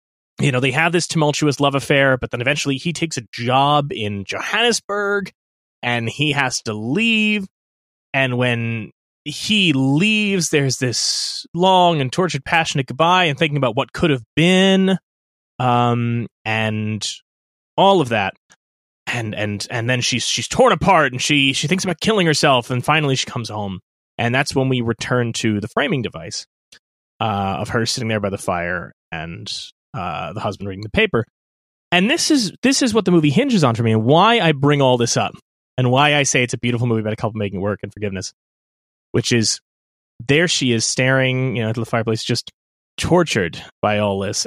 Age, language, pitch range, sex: 30-49, English, 110-145 Hz, male